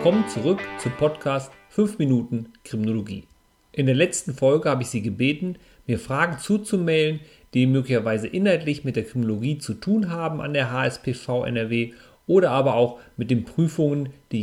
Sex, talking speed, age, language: male, 160 wpm, 40-59, German